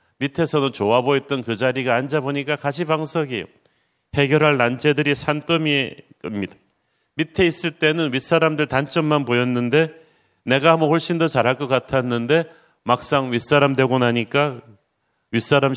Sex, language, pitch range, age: male, Korean, 125-155 Hz, 40-59